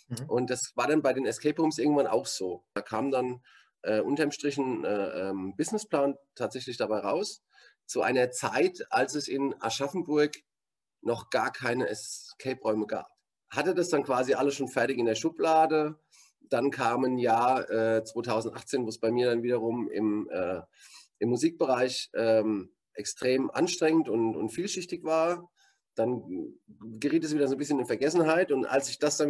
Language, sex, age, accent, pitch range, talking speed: German, male, 30-49, German, 115-150 Hz, 165 wpm